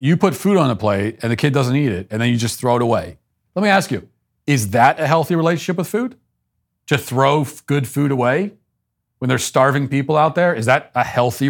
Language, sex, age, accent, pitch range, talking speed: English, male, 40-59, American, 110-140 Hz, 235 wpm